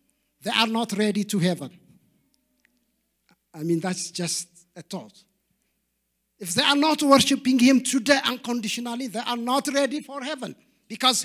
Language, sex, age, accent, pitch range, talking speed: English, male, 50-69, South African, 195-270 Hz, 145 wpm